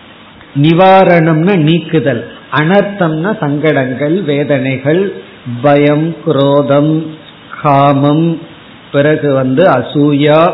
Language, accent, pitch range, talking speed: Tamil, native, 140-180 Hz, 65 wpm